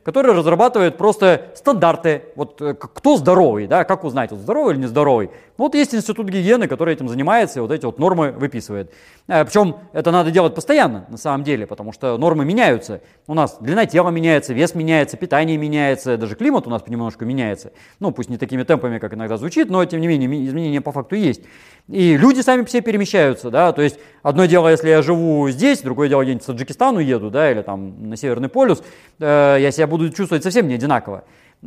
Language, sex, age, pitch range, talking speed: Russian, male, 30-49, 135-185 Hz, 200 wpm